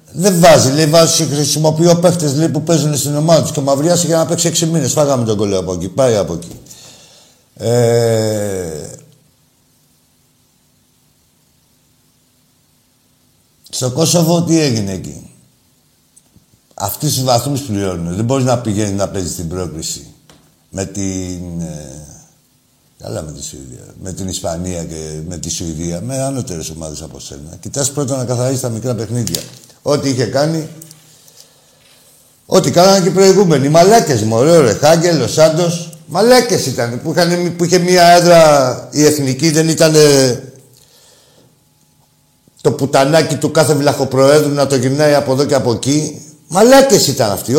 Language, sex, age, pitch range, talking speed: Greek, male, 60-79, 115-160 Hz, 140 wpm